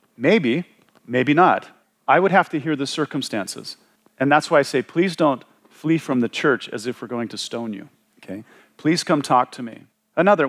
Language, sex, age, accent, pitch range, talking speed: English, male, 40-59, American, 115-155 Hz, 200 wpm